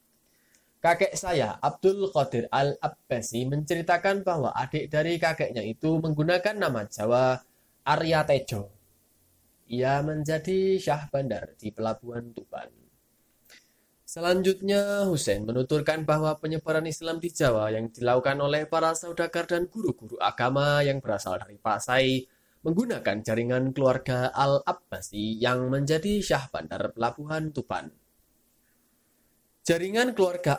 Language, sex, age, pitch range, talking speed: Indonesian, male, 20-39, 125-170 Hz, 110 wpm